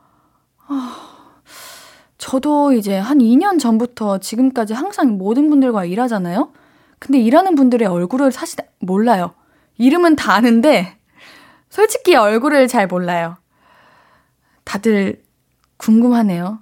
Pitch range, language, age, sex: 230-320 Hz, Korean, 20-39, female